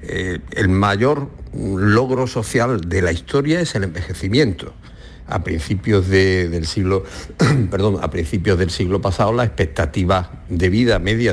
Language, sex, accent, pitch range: Spanish, male, Spanish, 85-105 Hz